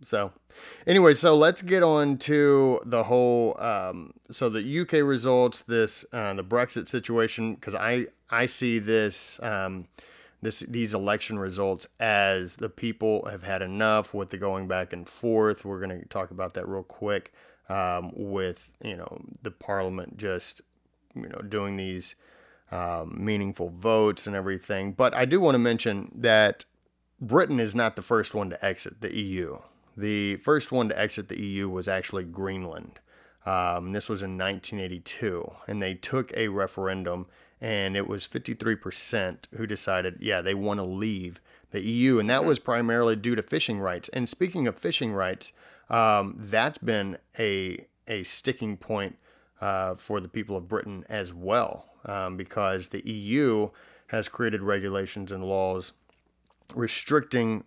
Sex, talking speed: male, 160 wpm